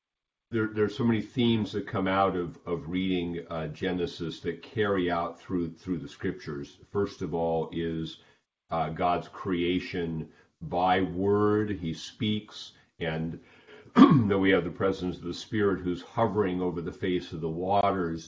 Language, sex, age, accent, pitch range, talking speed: English, male, 50-69, American, 85-95 Hz, 160 wpm